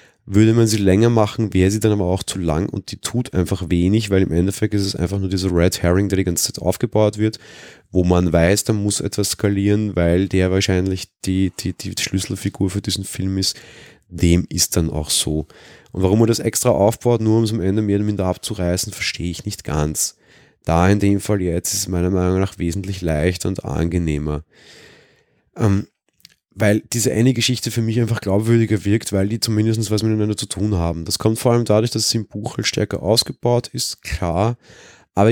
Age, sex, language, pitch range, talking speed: 20-39, male, German, 90-105 Hz, 205 wpm